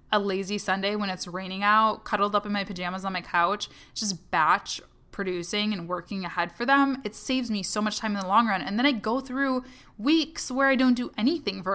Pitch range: 190-250 Hz